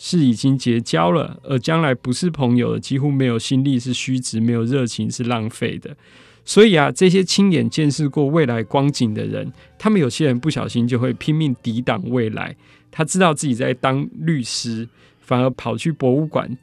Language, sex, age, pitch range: Chinese, male, 20-39, 120-150 Hz